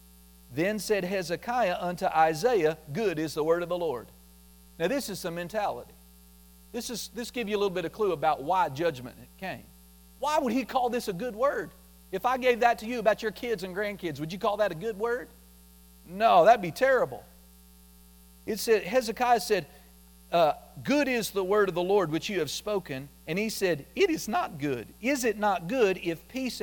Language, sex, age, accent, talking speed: English, male, 40-59, American, 205 wpm